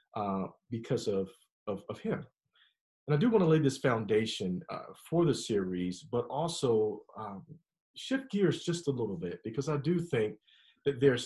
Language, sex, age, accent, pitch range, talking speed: English, male, 40-59, American, 115-160 Hz, 175 wpm